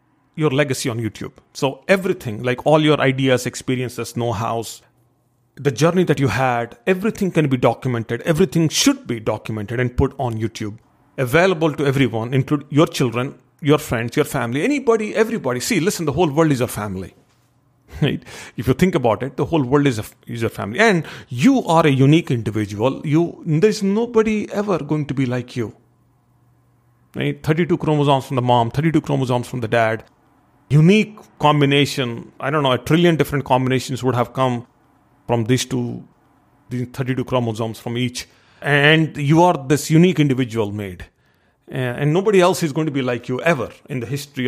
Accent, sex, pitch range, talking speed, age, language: Indian, male, 120-155 Hz, 175 wpm, 40-59, English